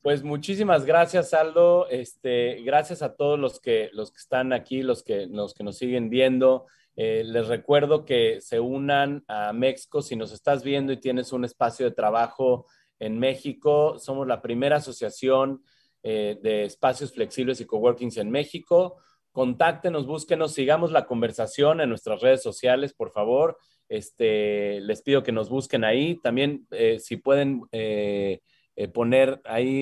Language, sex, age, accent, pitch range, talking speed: Spanish, male, 30-49, Mexican, 125-160 Hz, 160 wpm